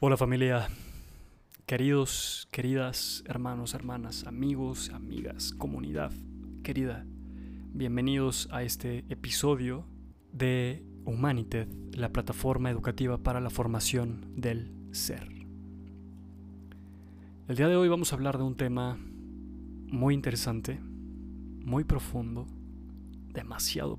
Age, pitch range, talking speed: 20-39, 95-125 Hz, 100 wpm